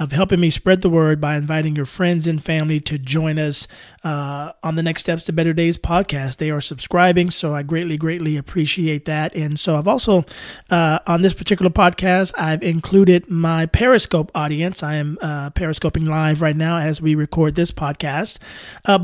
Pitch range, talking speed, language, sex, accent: 150-175 Hz, 190 wpm, English, male, American